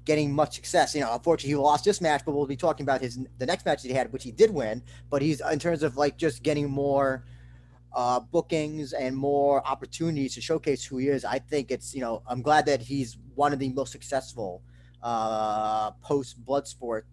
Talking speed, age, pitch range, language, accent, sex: 215 wpm, 20-39, 120-150 Hz, English, American, male